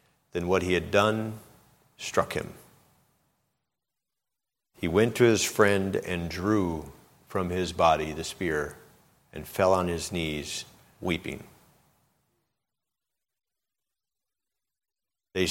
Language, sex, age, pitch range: English, male, 50-69, 90-110 Hz